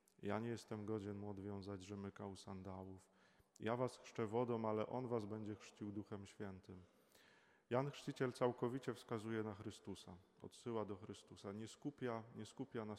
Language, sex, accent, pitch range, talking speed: Polish, male, native, 100-115 Hz, 150 wpm